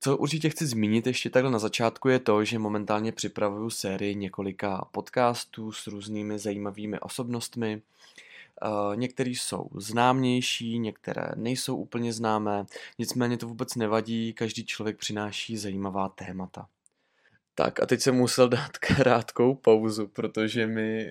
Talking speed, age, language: 130 wpm, 20-39, Czech